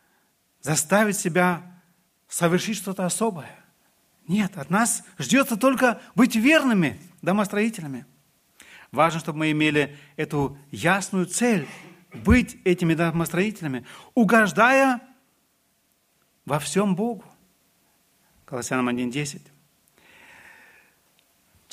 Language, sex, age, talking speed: Russian, male, 40-59, 80 wpm